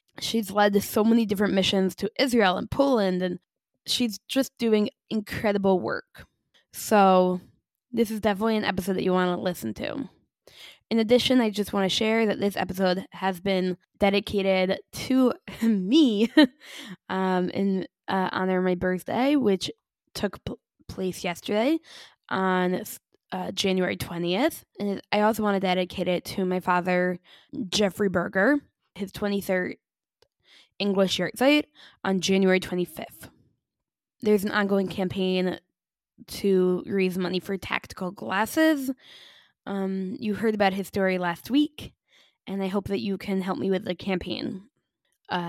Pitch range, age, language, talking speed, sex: 185-215 Hz, 10-29, English, 140 wpm, female